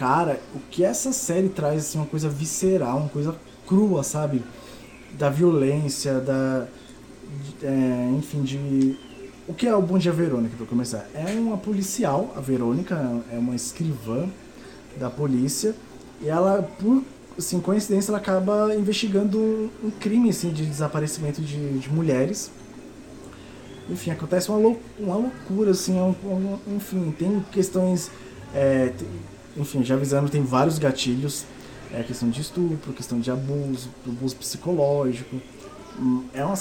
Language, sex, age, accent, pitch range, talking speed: Portuguese, male, 20-39, Brazilian, 130-185 Hz, 135 wpm